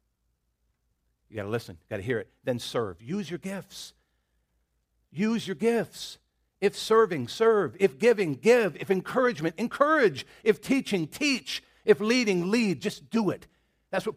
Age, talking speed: 50-69, 145 wpm